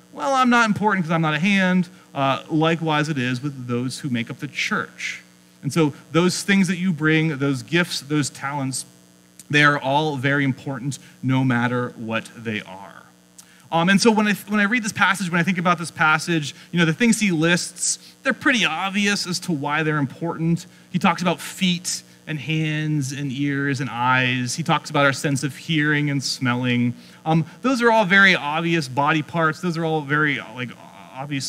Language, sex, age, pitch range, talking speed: English, male, 30-49, 130-175 Hz, 200 wpm